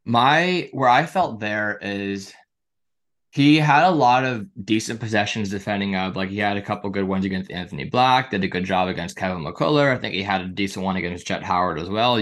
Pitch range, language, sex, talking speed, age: 95-110 Hz, English, male, 215 wpm, 20-39